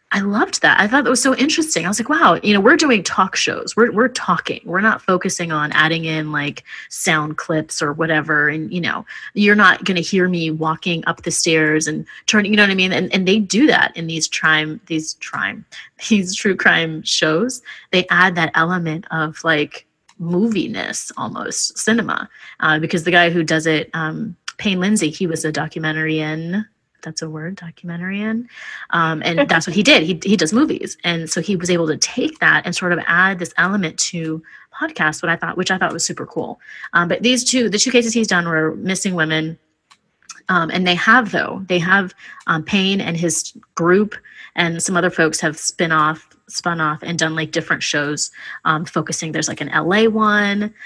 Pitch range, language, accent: 160-210 Hz, English, American